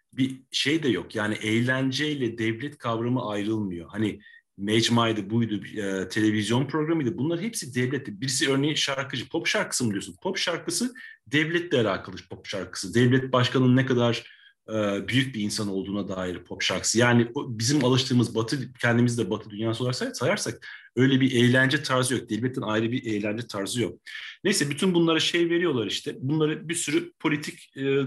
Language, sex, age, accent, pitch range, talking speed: Turkish, male, 40-59, native, 110-135 Hz, 155 wpm